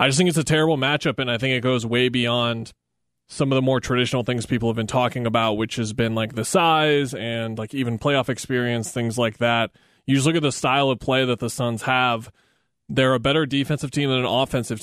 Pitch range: 115-135 Hz